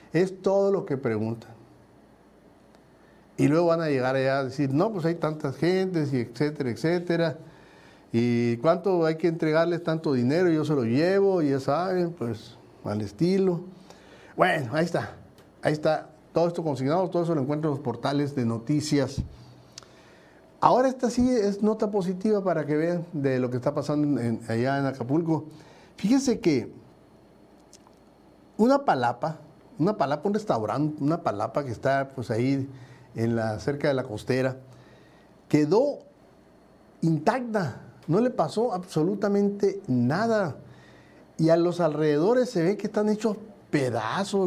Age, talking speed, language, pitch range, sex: 50-69, 145 wpm, Spanish, 130-185 Hz, male